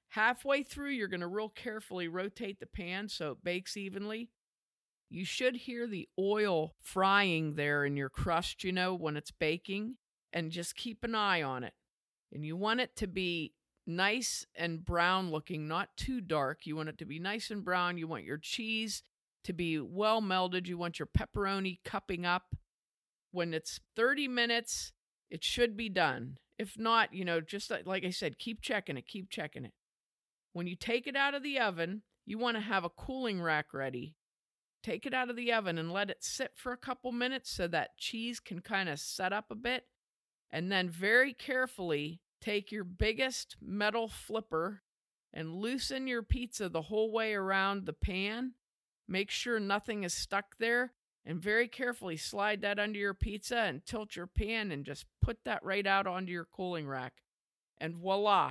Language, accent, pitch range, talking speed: English, American, 170-225 Hz, 185 wpm